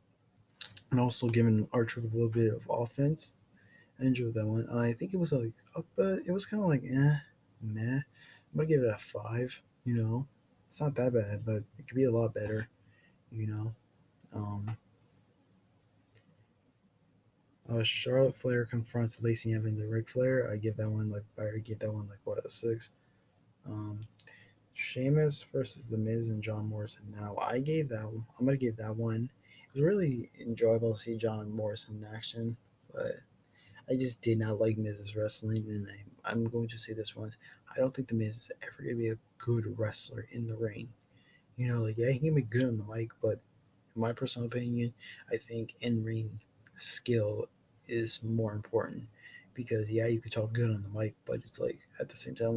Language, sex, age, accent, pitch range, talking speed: English, male, 20-39, American, 110-125 Hz, 195 wpm